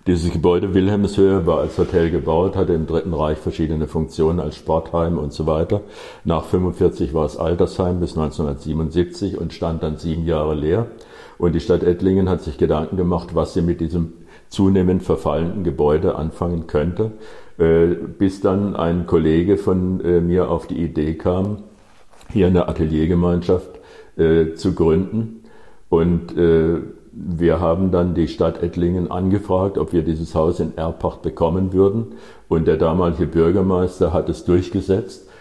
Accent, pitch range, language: German, 80-95 Hz, German